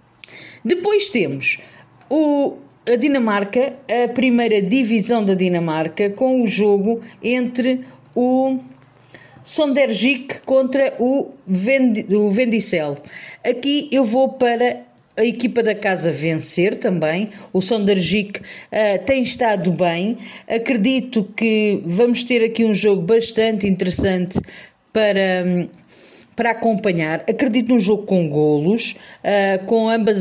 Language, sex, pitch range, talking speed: Portuguese, female, 195-245 Hz, 105 wpm